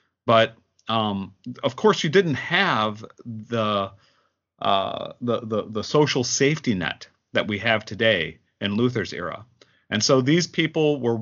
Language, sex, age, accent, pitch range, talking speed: English, male, 30-49, American, 105-125 Hz, 145 wpm